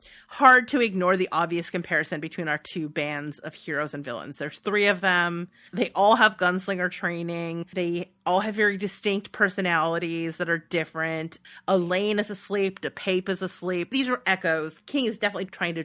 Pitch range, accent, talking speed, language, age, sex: 170-220 Hz, American, 180 wpm, English, 30-49, female